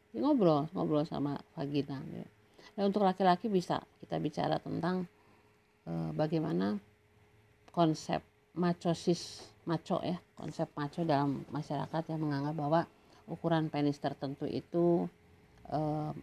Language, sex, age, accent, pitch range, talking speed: Indonesian, female, 50-69, native, 145-185 Hz, 105 wpm